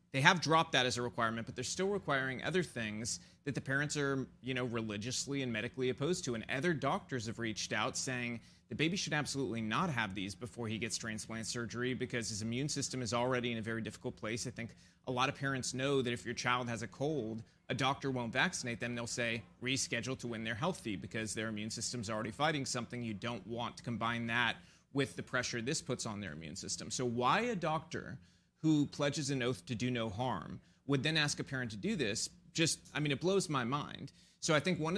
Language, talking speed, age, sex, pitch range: English, 230 wpm, 30-49, male, 115-140 Hz